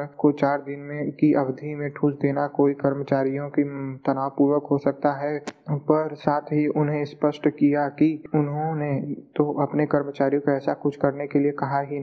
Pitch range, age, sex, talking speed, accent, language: 140-145 Hz, 20-39, male, 165 wpm, native, Hindi